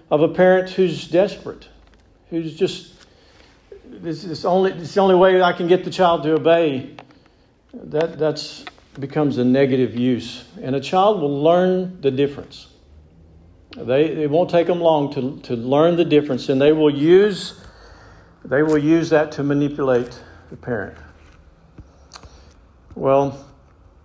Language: English